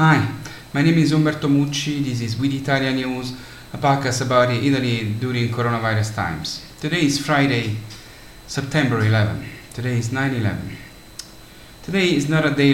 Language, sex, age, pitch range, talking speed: English, male, 30-49, 105-130 Hz, 145 wpm